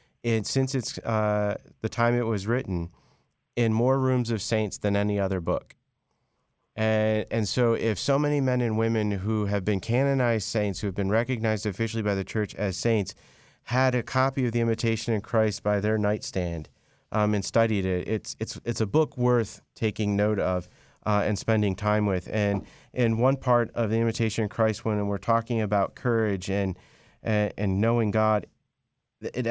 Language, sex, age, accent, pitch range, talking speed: English, male, 40-59, American, 105-120 Hz, 185 wpm